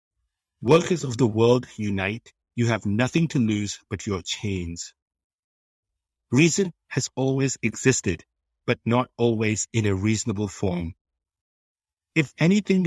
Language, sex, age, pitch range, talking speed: English, male, 60-79, 95-130 Hz, 120 wpm